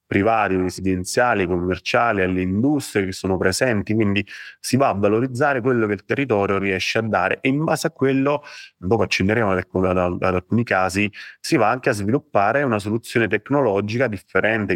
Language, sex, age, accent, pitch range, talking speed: English, male, 30-49, Italian, 90-105 Hz, 165 wpm